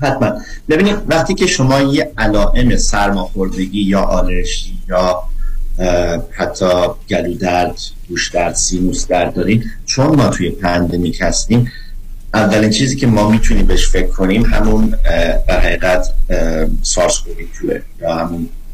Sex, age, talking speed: male, 50-69, 130 wpm